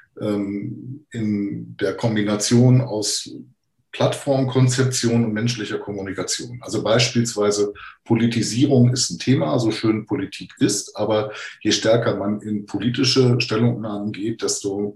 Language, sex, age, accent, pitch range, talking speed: German, male, 50-69, German, 105-130 Hz, 110 wpm